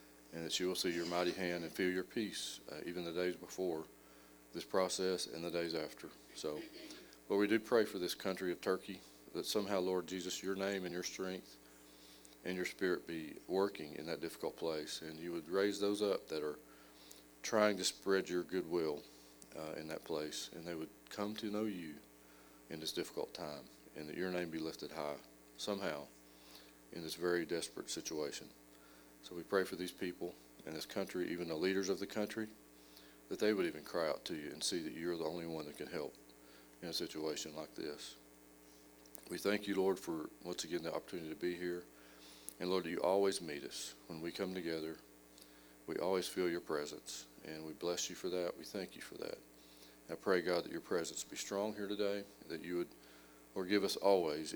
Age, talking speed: 40-59, 205 wpm